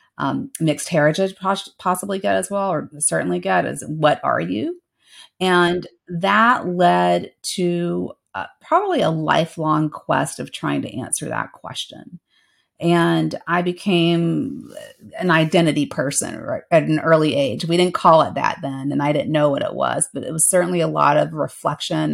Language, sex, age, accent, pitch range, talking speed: English, female, 40-59, American, 155-180 Hz, 165 wpm